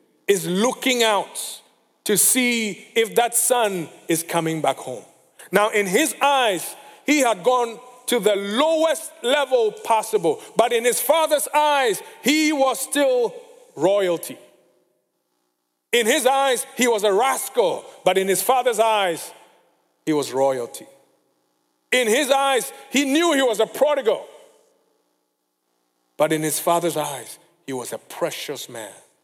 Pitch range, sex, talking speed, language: 170-260 Hz, male, 140 wpm, English